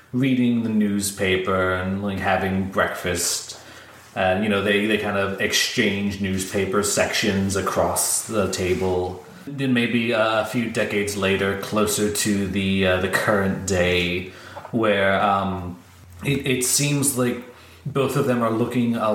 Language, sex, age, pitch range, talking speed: English, male, 30-49, 95-115 Hz, 145 wpm